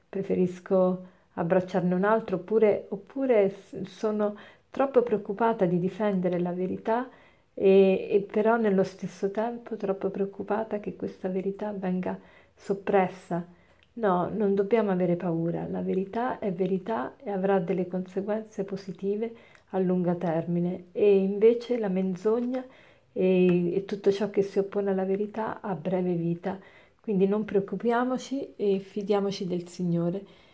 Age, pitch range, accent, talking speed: 50-69, 185-215 Hz, native, 130 wpm